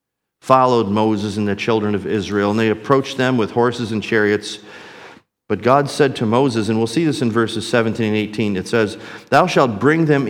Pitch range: 105-130 Hz